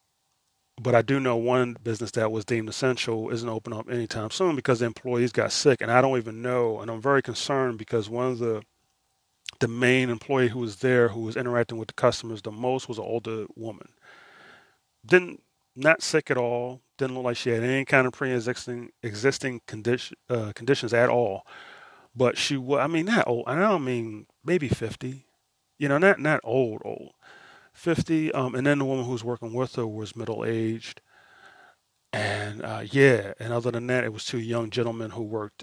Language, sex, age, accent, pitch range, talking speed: English, male, 30-49, American, 115-130 Hz, 195 wpm